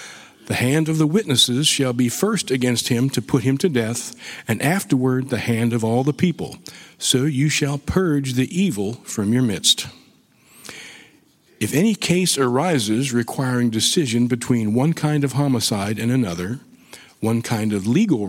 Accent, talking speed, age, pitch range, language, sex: American, 160 wpm, 50-69, 115-150 Hz, English, male